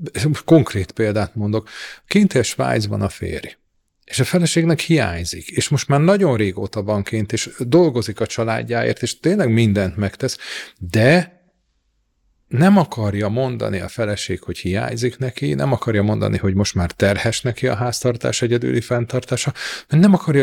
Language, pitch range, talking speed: Hungarian, 105-140 Hz, 145 wpm